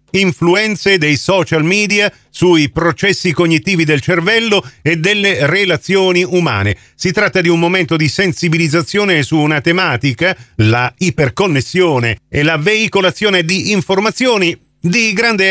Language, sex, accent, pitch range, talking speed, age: Italian, male, native, 140-190 Hz, 125 wpm, 40-59